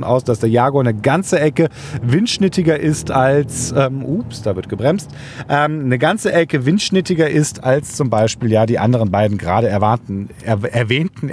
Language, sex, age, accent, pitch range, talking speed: German, male, 40-59, German, 125-165 Hz, 165 wpm